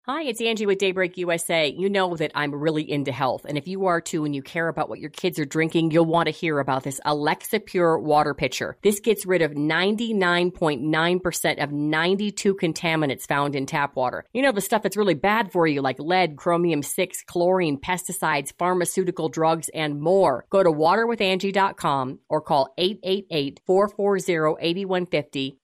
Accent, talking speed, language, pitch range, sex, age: American, 170 wpm, English, 155-190 Hz, female, 40-59